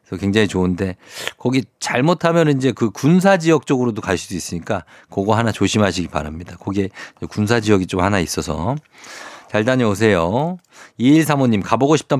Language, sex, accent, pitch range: Korean, male, native, 95-125 Hz